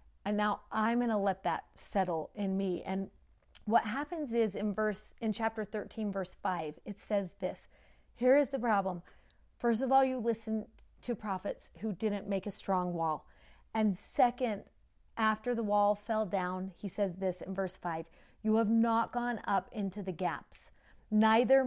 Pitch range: 195-230 Hz